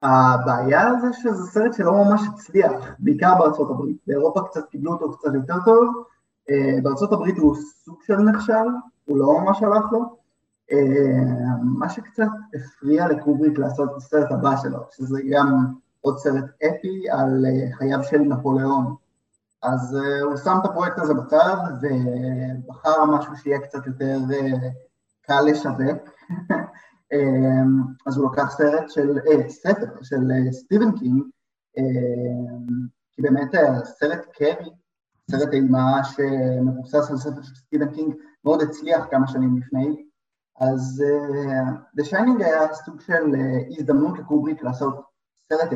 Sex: male